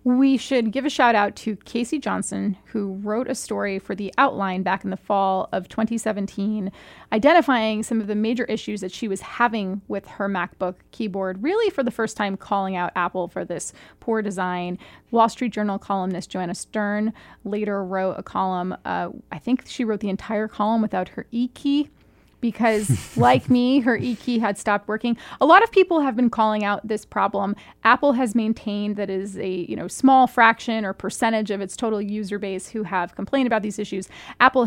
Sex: female